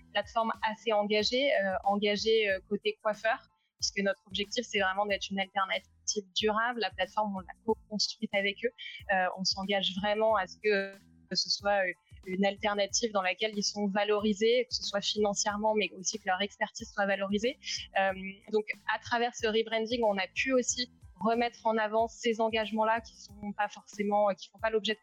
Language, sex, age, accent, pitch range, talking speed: French, female, 20-39, French, 195-225 Hz, 175 wpm